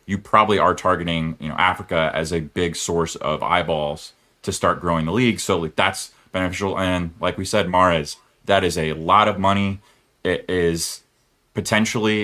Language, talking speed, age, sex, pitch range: English, 175 wpm, 30-49, male, 85-100 Hz